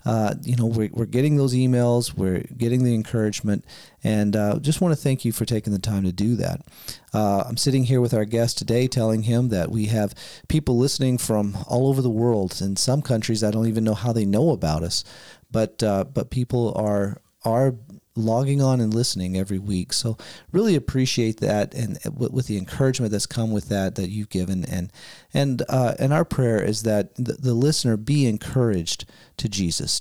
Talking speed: 200 wpm